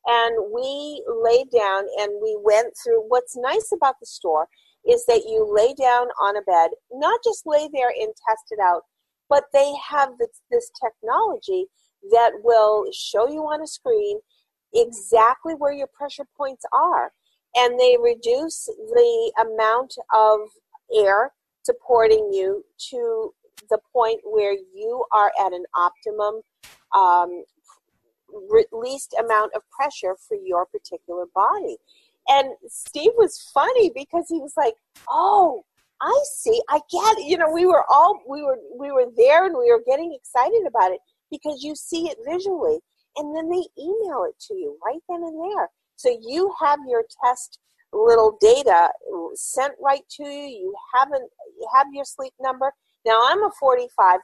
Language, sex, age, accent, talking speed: English, female, 50-69, American, 160 wpm